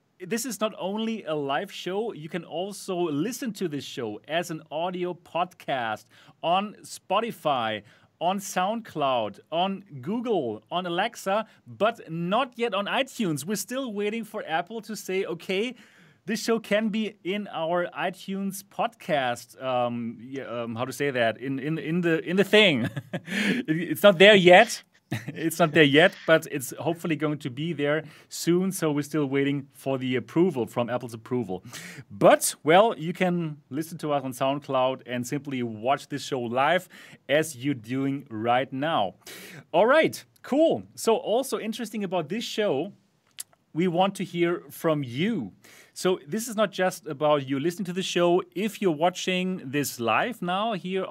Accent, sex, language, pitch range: German, male, English, 140-200 Hz